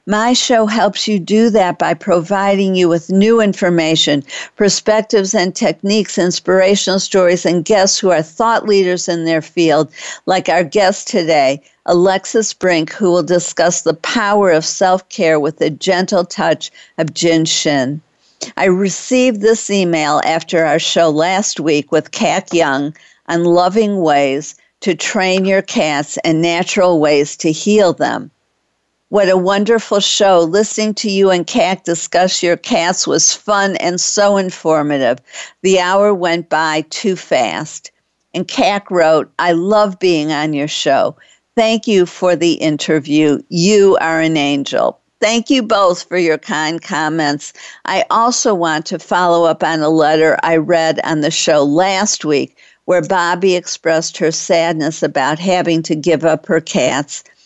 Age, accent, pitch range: 50-69, American, 160-200 Hz